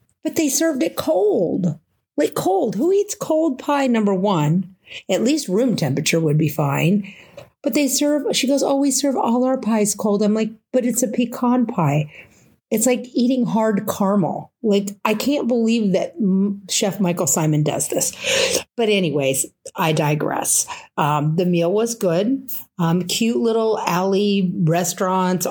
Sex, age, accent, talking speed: female, 40-59, American, 160 wpm